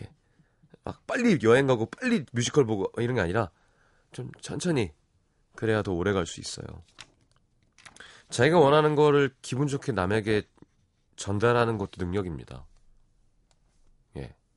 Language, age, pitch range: Korean, 30-49, 95-145 Hz